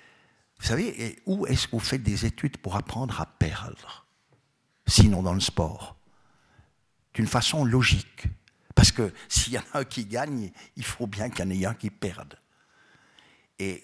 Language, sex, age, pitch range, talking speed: French, male, 60-79, 95-120 Hz, 175 wpm